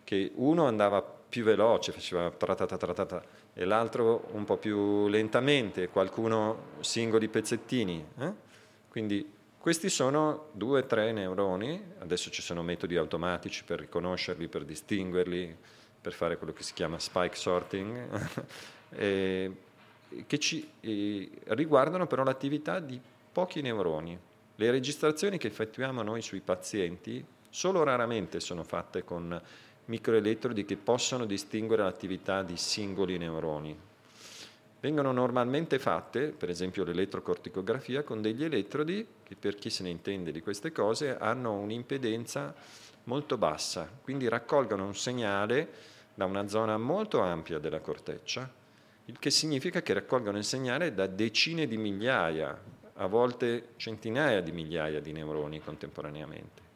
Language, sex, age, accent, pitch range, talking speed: Italian, male, 30-49, native, 95-130 Hz, 130 wpm